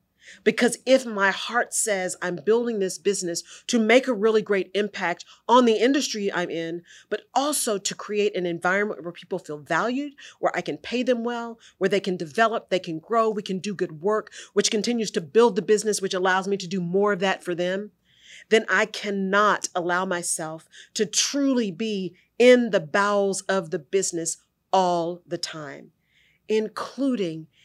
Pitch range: 180-220 Hz